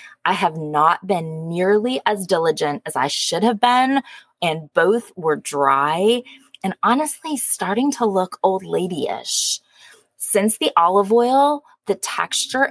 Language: English